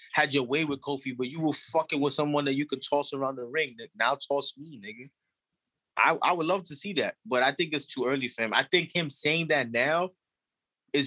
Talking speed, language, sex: 250 wpm, English, male